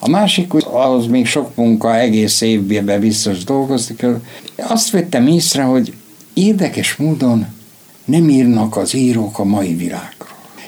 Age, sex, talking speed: 60-79, male, 135 wpm